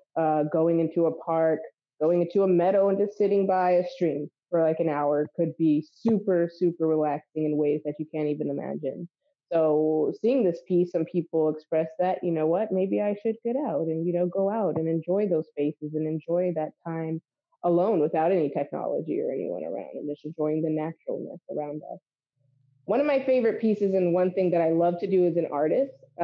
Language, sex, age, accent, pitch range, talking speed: English, female, 20-39, American, 155-180 Hz, 210 wpm